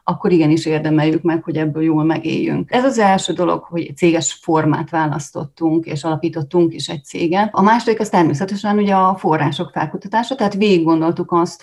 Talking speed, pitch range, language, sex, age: 170 wpm, 160-185 Hz, Hungarian, female, 30-49